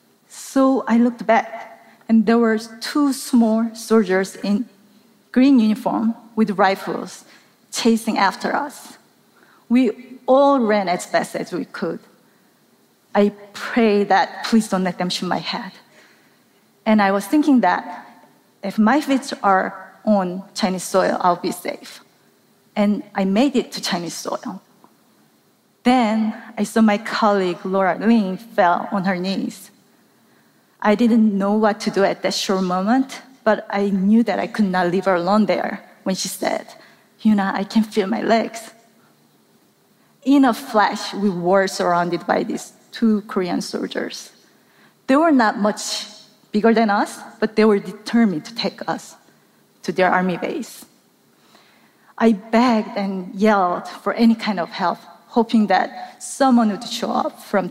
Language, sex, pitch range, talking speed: English, female, 195-230 Hz, 150 wpm